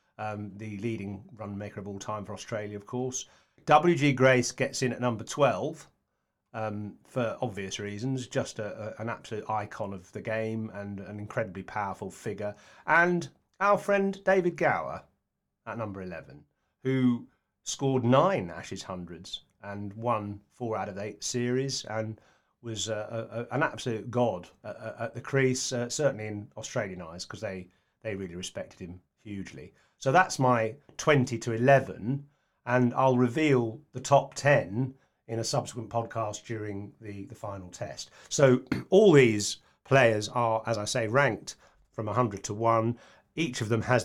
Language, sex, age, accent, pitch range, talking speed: English, male, 30-49, British, 105-130 Hz, 155 wpm